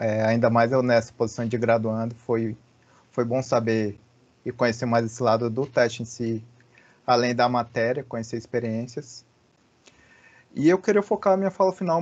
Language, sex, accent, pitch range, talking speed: Portuguese, male, Brazilian, 115-135 Hz, 170 wpm